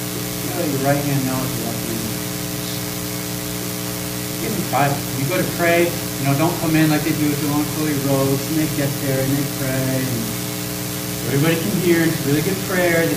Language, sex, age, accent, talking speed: English, male, 30-49, American, 185 wpm